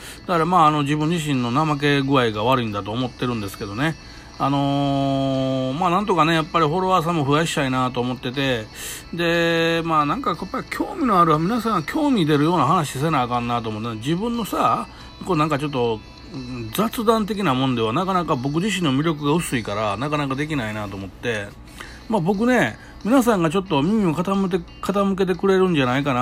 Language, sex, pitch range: Japanese, male, 120-180 Hz